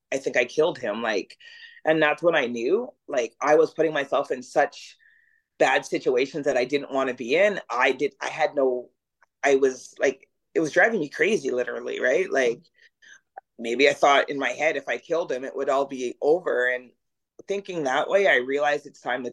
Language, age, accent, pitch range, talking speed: English, 30-49, American, 140-185 Hz, 210 wpm